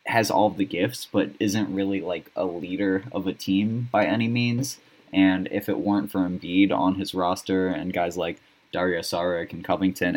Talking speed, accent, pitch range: 190 wpm, American, 90-100 Hz